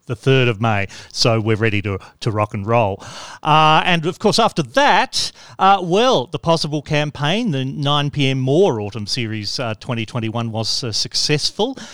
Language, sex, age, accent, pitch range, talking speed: English, male, 40-59, Australian, 110-150 Hz, 165 wpm